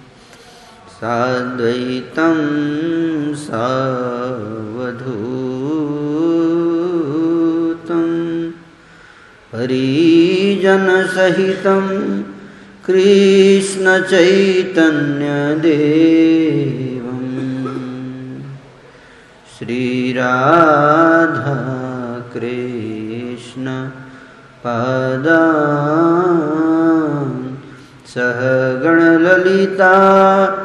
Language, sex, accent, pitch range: Hindi, male, native, 130-170 Hz